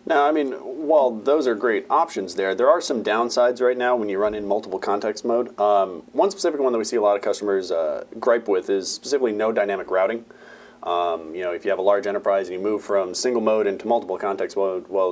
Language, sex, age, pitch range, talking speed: English, male, 30-49, 100-135 Hz, 240 wpm